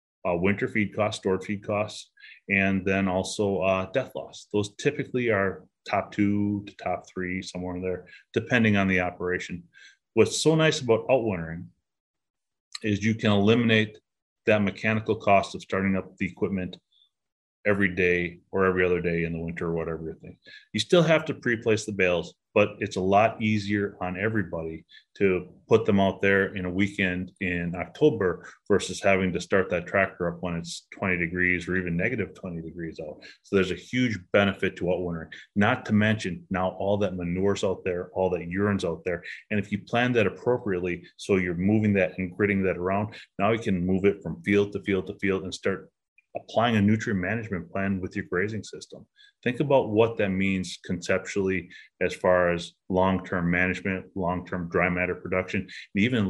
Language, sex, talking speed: English, male, 185 wpm